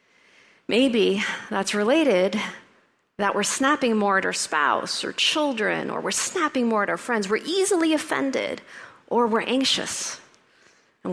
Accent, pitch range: American, 190-235 Hz